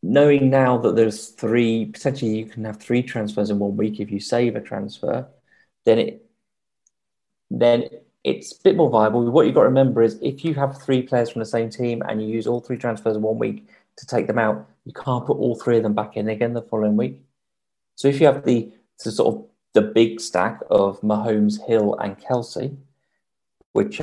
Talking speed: 210 wpm